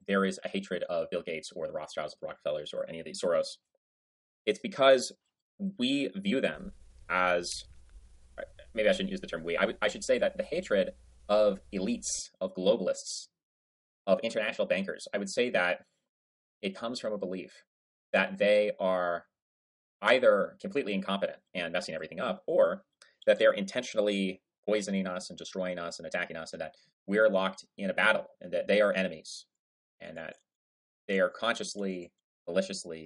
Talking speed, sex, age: 170 wpm, male, 30-49